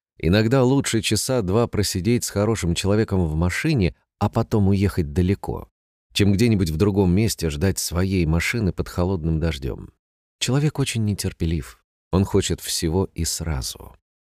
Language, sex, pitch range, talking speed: Russian, male, 85-110 Hz, 140 wpm